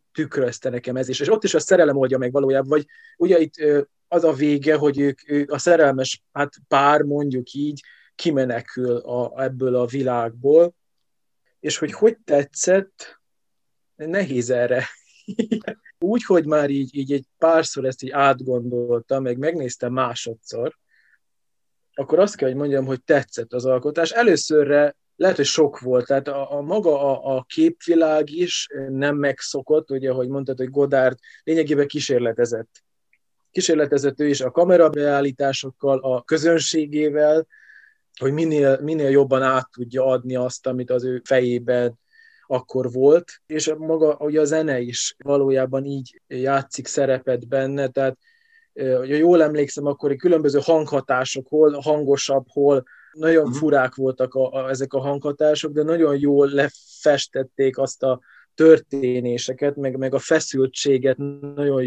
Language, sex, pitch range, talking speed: Hungarian, male, 130-155 Hz, 140 wpm